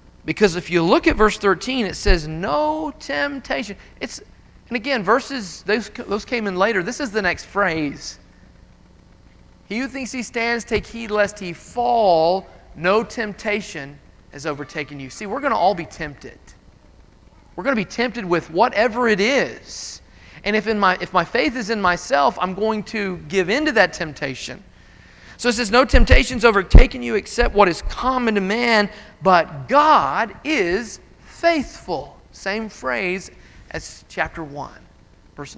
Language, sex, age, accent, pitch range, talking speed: English, male, 40-59, American, 165-230 Hz, 165 wpm